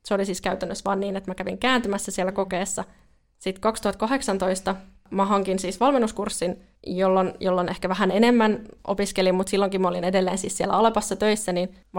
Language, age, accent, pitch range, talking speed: Finnish, 20-39, native, 185-225 Hz, 175 wpm